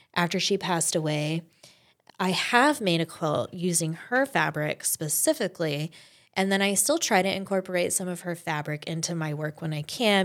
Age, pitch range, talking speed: 20-39, 160-195 Hz, 175 wpm